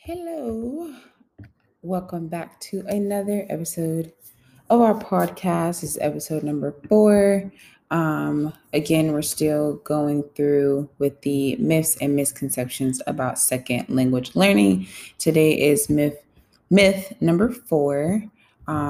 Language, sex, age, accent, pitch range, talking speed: English, female, 20-39, American, 135-170 Hz, 110 wpm